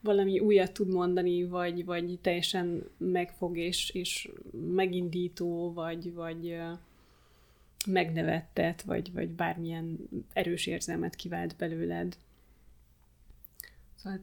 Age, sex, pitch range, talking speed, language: 20-39, female, 180-205 Hz, 95 wpm, Hungarian